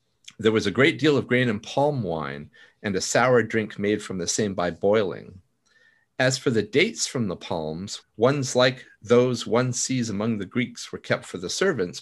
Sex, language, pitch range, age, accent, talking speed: male, English, 105-140 Hz, 50-69, American, 200 wpm